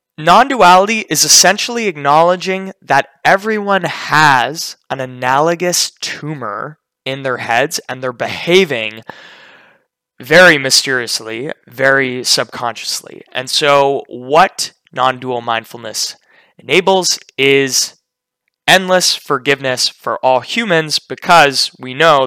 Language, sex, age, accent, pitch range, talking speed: English, male, 20-39, American, 130-175 Hz, 95 wpm